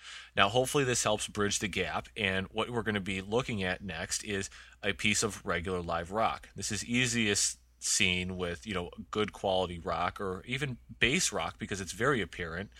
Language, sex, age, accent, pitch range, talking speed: English, male, 30-49, American, 90-110 Hz, 190 wpm